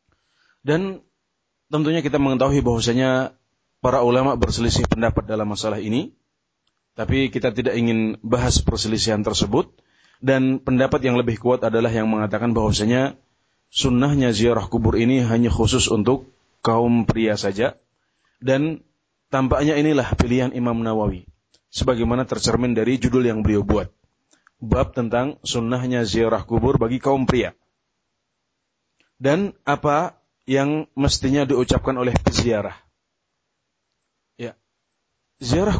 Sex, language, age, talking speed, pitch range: male, Indonesian, 30-49, 115 wpm, 115-130 Hz